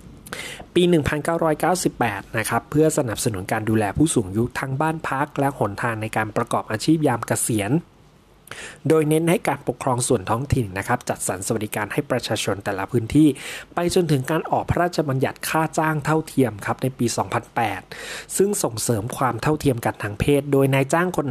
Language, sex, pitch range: Thai, male, 115-150 Hz